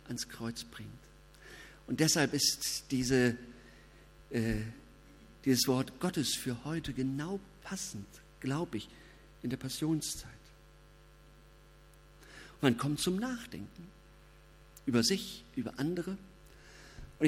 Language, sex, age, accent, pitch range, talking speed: German, male, 50-69, German, 130-180 Hz, 95 wpm